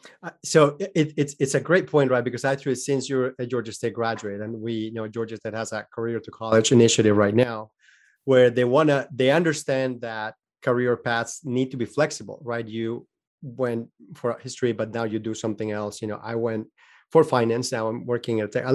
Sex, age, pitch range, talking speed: male, 30-49, 115-140 Hz, 205 wpm